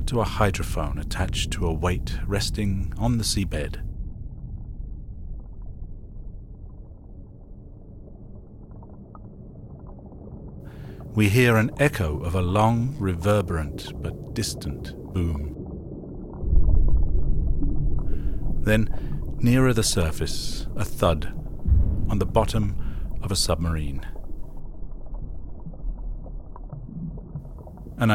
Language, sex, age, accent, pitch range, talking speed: English, male, 50-69, British, 80-110 Hz, 75 wpm